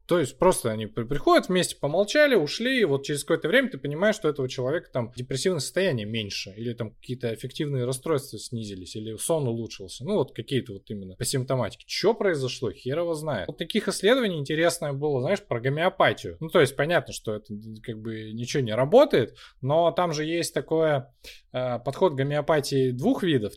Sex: male